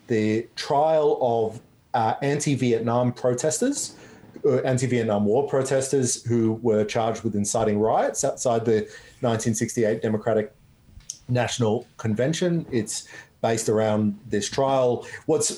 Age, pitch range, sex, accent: 30-49, 110-135 Hz, male, Australian